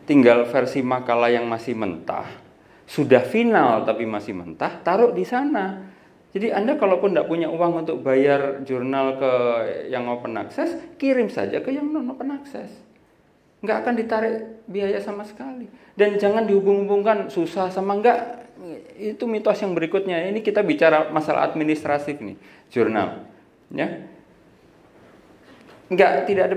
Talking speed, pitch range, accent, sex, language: 140 wpm, 150-215 Hz, native, male, Indonesian